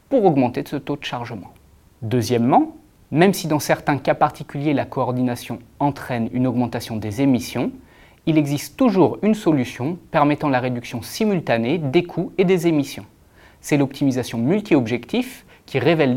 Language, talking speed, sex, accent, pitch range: French, 150 wpm, male, French, 120-165 Hz